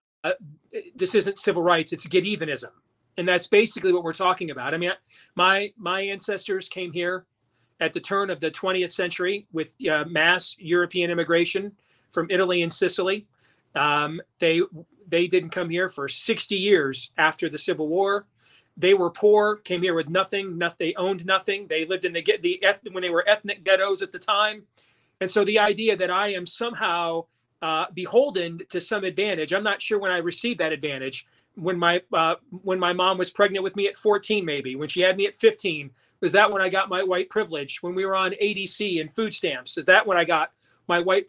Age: 40-59